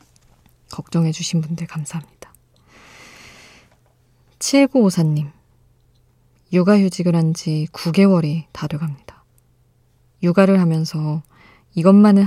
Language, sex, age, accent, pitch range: Korean, female, 20-39, native, 145-175 Hz